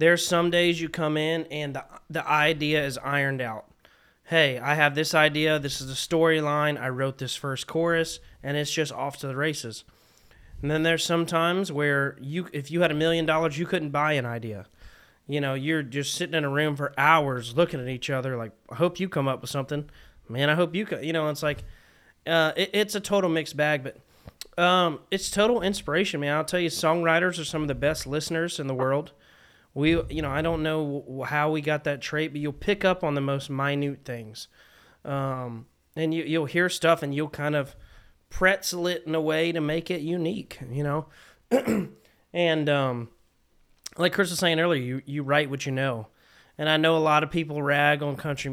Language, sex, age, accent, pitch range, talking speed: English, male, 20-39, American, 140-165 Hz, 215 wpm